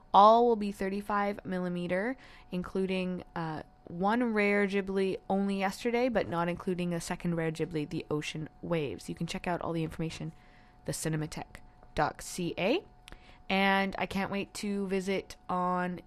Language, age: English, 20-39